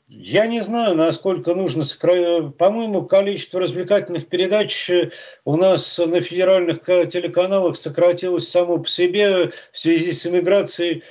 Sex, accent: male, native